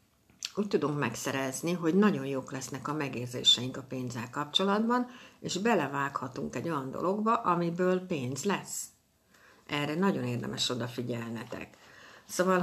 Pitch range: 135-180 Hz